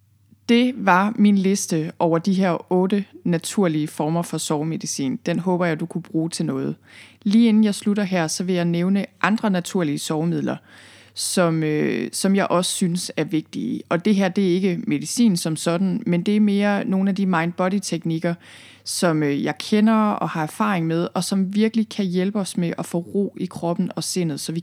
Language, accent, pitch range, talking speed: Danish, native, 160-200 Hz, 190 wpm